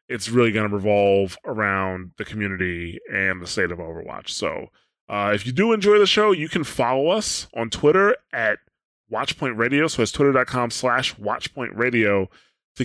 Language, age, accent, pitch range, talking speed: English, 20-39, American, 115-145 Hz, 170 wpm